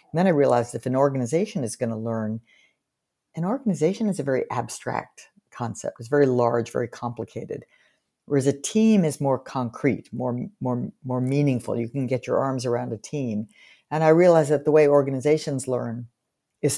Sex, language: female, English